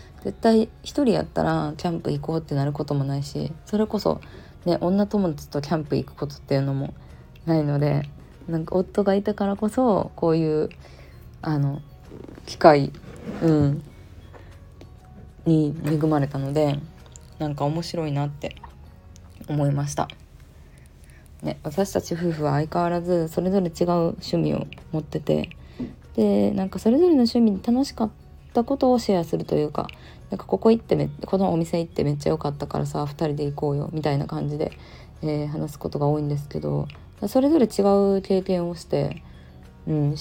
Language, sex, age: Japanese, female, 20-39